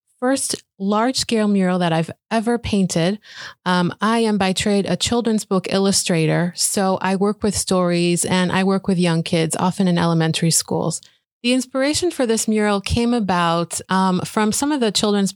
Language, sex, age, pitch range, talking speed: English, female, 30-49, 180-220 Hz, 170 wpm